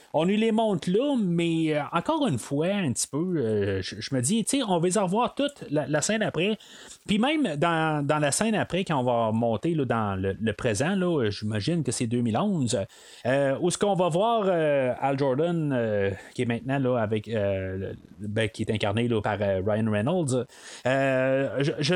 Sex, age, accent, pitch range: male, 30-49, Canadian, 115-165 Hz